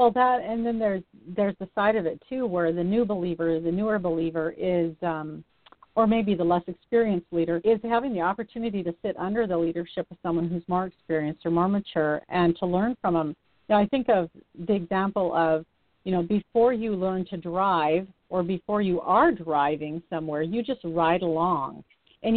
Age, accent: 50-69, American